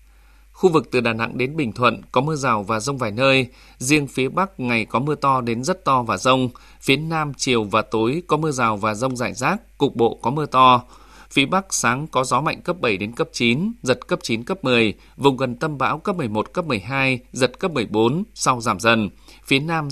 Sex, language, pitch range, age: male, Vietnamese, 120-145 Hz, 20-39